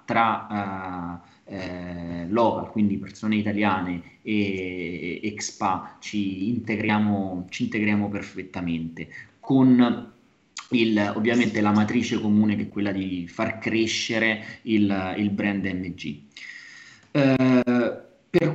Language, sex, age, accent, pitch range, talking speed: Italian, male, 20-39, native, 100-120 Hz, 105 wpm